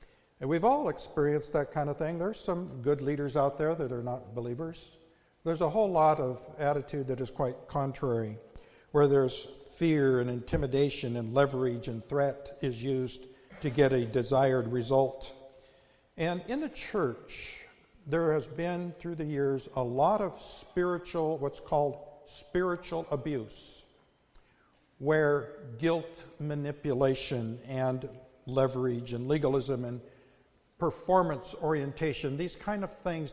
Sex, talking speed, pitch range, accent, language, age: male, 135 wpm, 135-165 Hz, American, English, 60-79